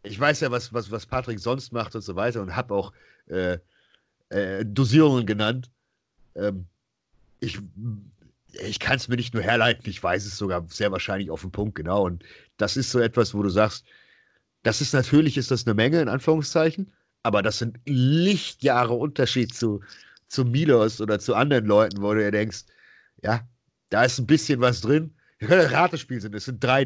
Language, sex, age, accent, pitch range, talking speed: German, male, 50-69, German, 110-135 Hz, 190 wpm